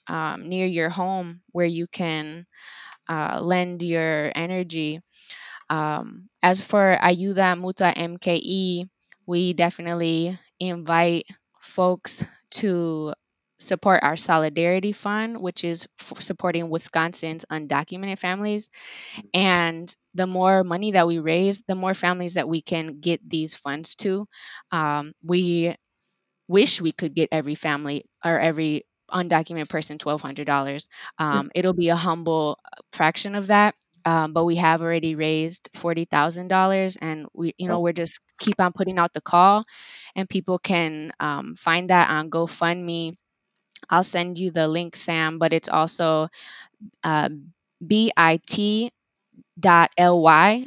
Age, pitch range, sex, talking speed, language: 10-29, 160-185 Hz, female, 130 wpm, English